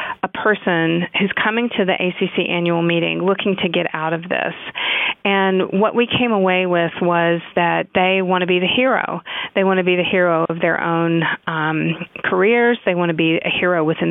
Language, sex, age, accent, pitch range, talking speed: English, female, 40-59, American, 170-200 Hz, 200 wpm